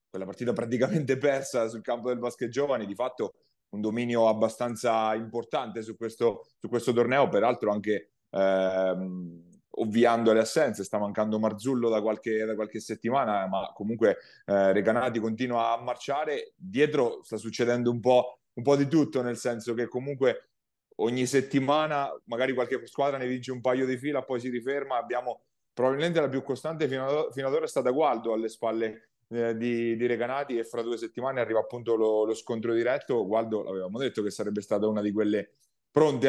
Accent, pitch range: native, 110-130 Hz